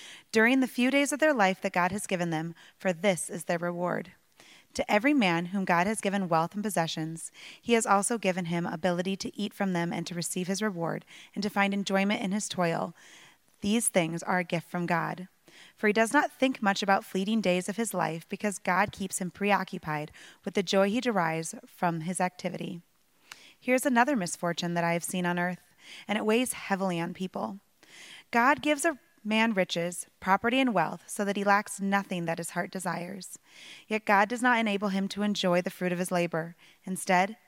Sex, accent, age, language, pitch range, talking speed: female, American, 20-39, English, 180-220 Hz, 205 wpm